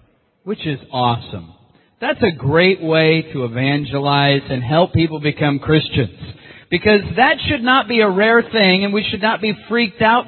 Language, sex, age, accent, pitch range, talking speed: English, male, 50-69, American, 150-220 Hz, 170 wpm